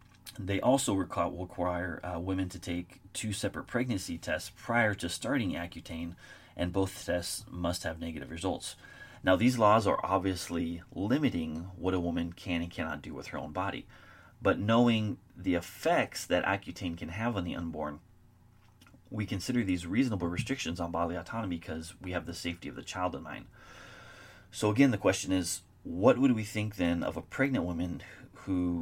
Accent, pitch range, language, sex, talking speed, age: American, 85-105 Hz, English, male, 175 wpm, 30-49